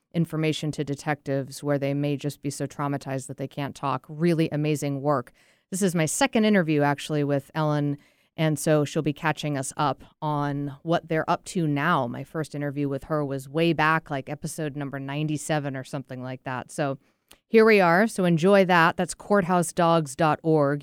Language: English